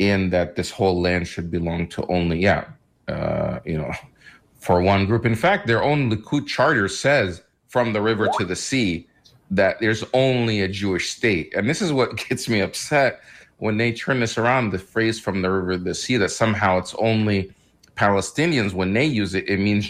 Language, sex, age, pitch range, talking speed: English, male, 40-59, 85-110 Hz, 200 wpm